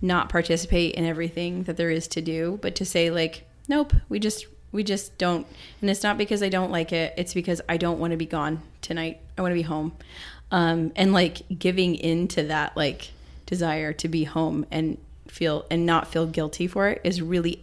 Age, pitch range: 20-39, 165-190 Hz